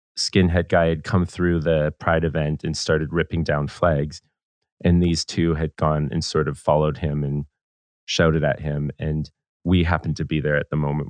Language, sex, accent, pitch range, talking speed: English, male, American, 75-90 Hz, 195 wpm